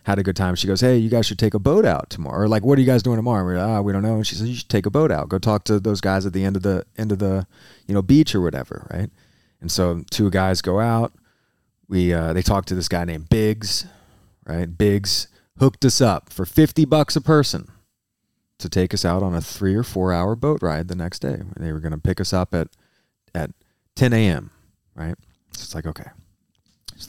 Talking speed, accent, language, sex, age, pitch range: 255 wpm, American, English, male, 30-49, 90-115 Hz